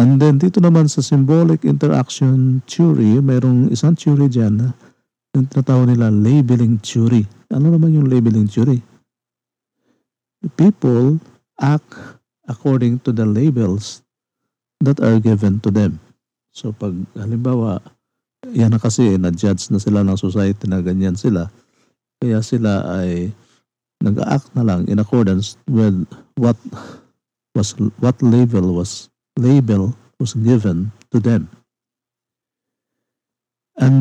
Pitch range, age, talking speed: 105-135 Hz, 50-69, 120 wpm